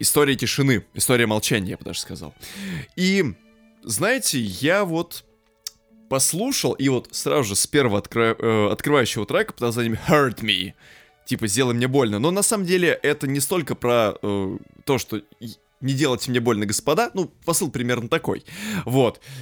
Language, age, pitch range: Russian, 20-39, 110-150 Hz